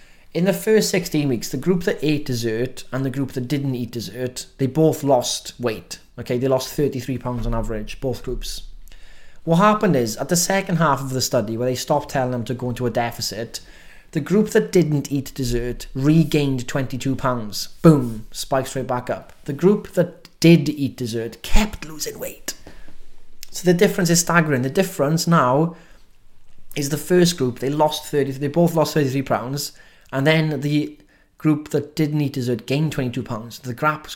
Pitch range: 125-160 Hz